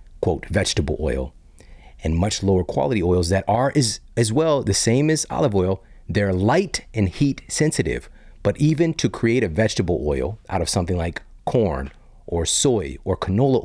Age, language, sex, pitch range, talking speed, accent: 40-59, English, male, 90-115 Hz, 170 wpm, American